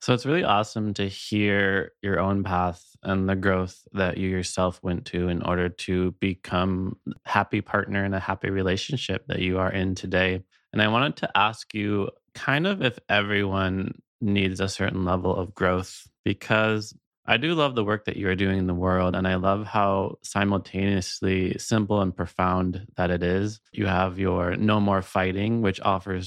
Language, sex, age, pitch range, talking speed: English, male, 20-39, 95-105 Hz, 185 wpm